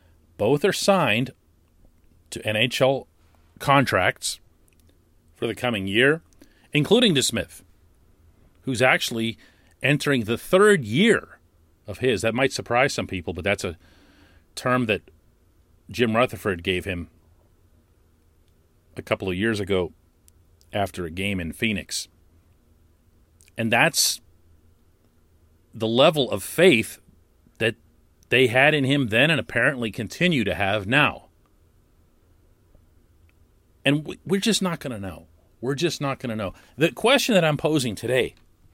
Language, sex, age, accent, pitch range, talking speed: English, male, 40-59, American, 85-130 Hz, 125 wpm